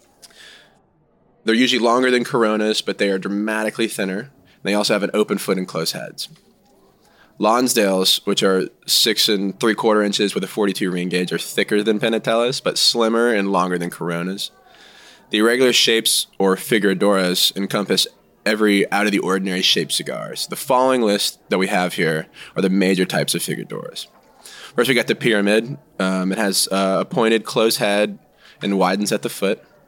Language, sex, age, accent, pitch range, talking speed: English, male, 20-39, American, 95-110 Hz, 175 wpm